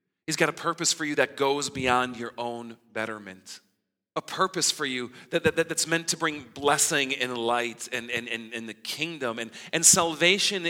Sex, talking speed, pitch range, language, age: male, 190 wpm, 115-160 Hz, English, 40-59